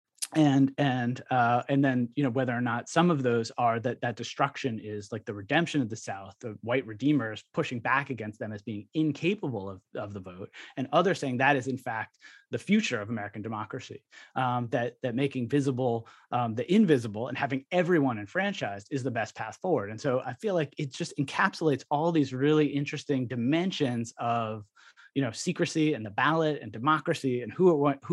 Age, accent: 30-49, American